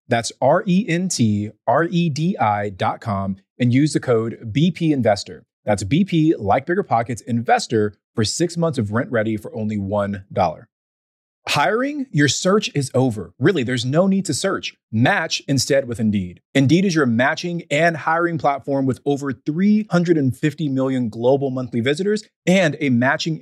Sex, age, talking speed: male, 30-49, 165 wpm